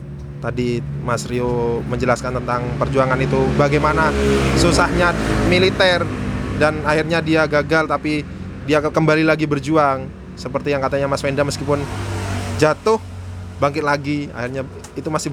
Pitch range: 115-155 Hz